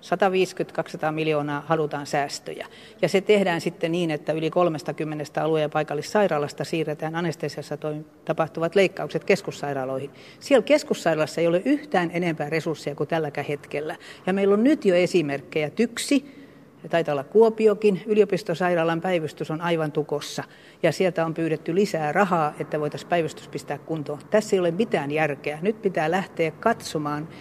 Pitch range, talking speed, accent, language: 150-195 Hz, 140 wpm, native, Finnish